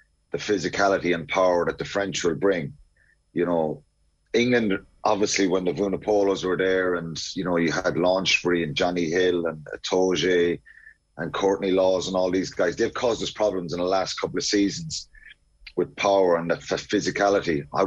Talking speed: 180 wpm